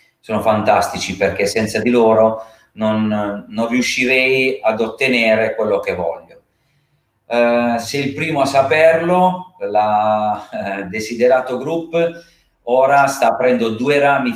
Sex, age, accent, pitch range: male, 40-59, native, 110-145 Hz